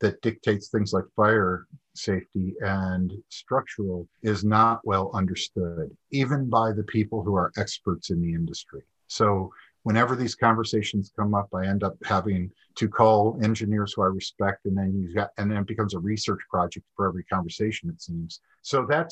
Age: 50-69